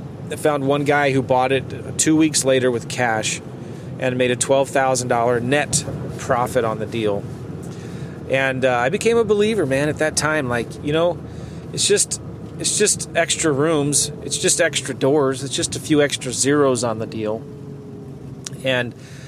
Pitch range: 130-160 Hz